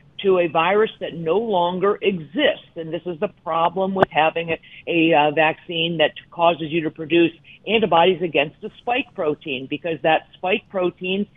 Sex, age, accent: female, 50-69, American